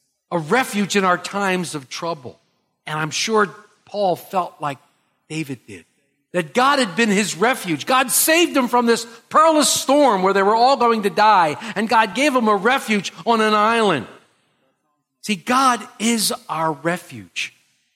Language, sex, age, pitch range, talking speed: English, male, 50-69, 160-255 Hz, 165 wpm